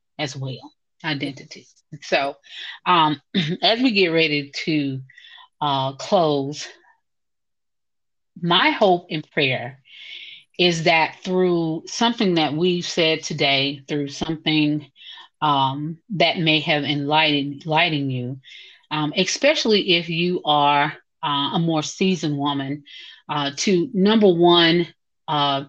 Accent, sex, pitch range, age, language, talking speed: American, female, 150-185 Hz, 30-49, English, 110 wpm